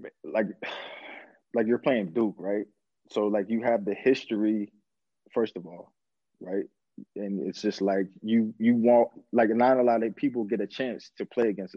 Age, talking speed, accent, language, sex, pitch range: 20-39, 180 wpm, American, English, male, 100-120 Hz